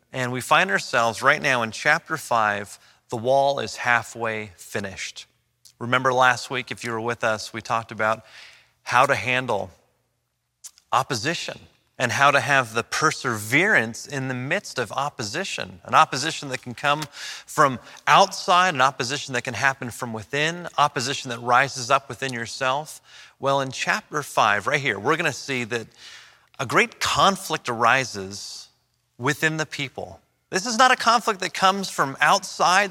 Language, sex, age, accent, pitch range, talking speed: English, male, 30-49, American, 115-150 Hz, 155 wpm